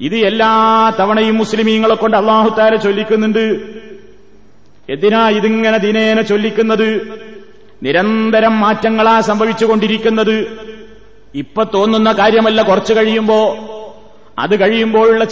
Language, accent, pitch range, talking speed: Malayalam, native, 210-225 Hz, 80 wpm